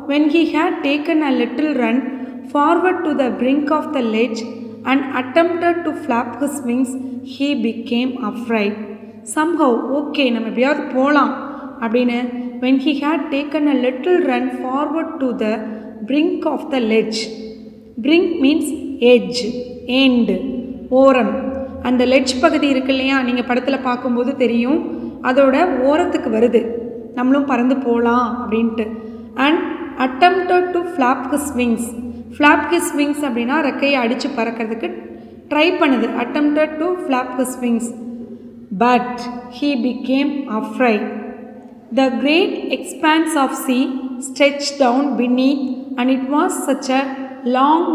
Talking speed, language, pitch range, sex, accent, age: 140 wpm, Tamil, 245-290 Hz, female, native, 20-39